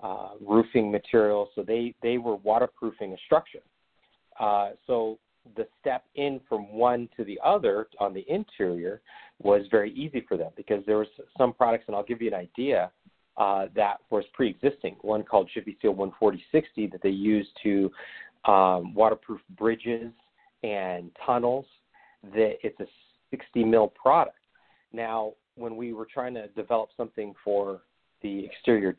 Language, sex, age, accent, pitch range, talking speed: English, male, 40-59, American, 100-125 Hz, 155 wpm